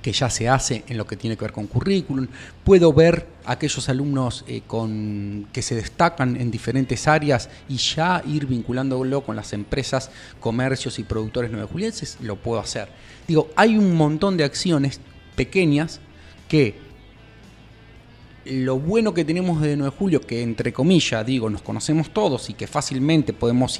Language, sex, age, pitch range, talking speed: Spanish, male, 30-49, 115-150 Hz, 165 wpm